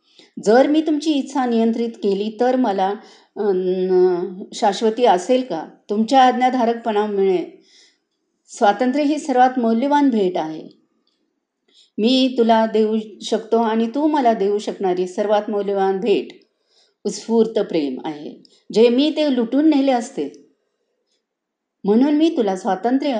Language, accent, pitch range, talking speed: Marathi, native, 210-280 Hz, 115 wpm